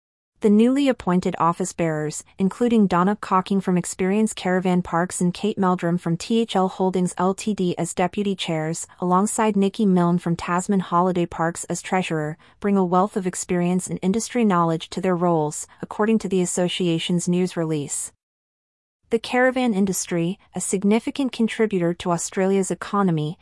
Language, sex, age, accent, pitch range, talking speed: English, female, 30-49, American, 175-210 Hz, 145 wpm